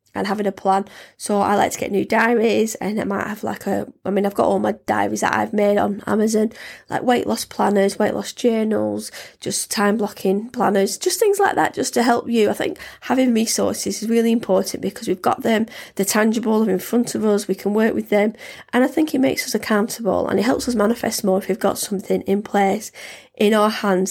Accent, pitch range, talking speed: British, 200-230 Hz, 230 wpm